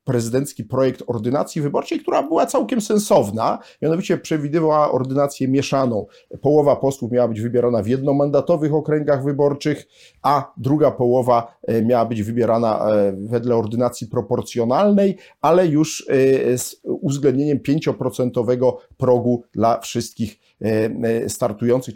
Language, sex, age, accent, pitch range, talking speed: Polish, male, 40-59, native, 115-145 Hz, 105 wpm